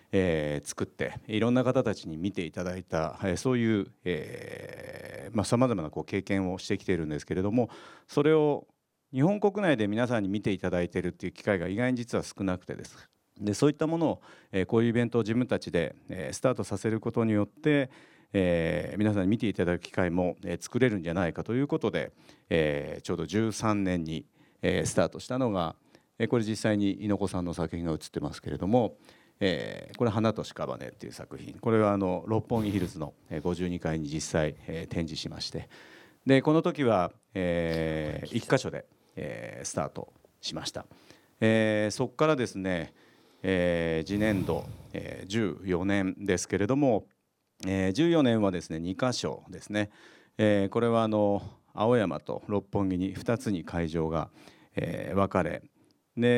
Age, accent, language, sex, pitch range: 50-69, native, Japanese, male, 90-120 Hz